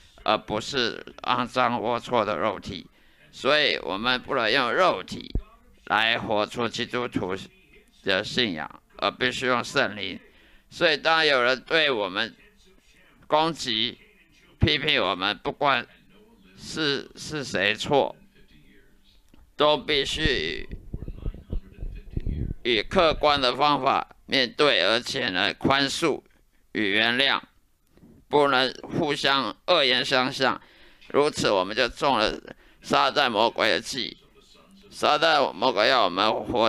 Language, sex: Chinese, male